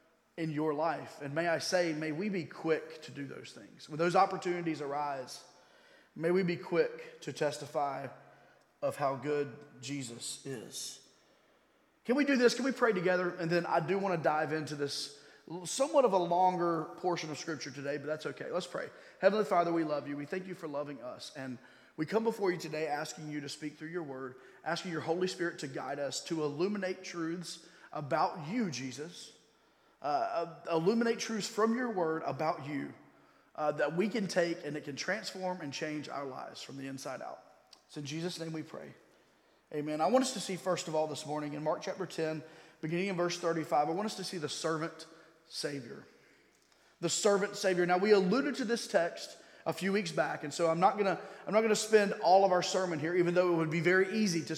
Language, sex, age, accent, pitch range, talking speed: English, male, 30-49, American, 155-190 Hz, 210 wpm